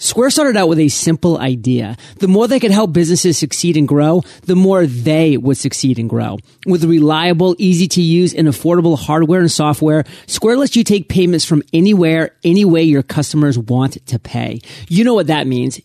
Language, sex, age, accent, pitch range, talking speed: English, male, 30-49, American, 145-185 Hz, 195 wpm